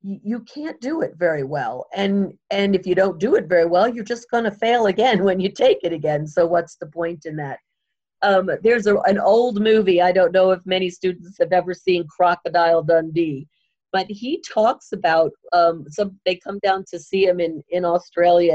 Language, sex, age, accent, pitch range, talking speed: English, female, 50-69, American, 175-220 Hz, 205 wpm